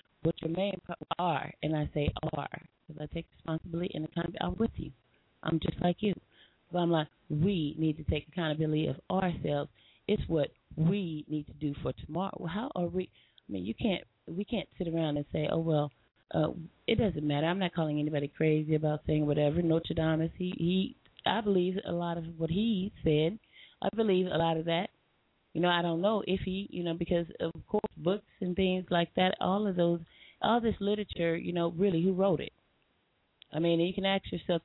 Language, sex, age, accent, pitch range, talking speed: English, female, 30-49, American, 155-185 Hz, 210 wpm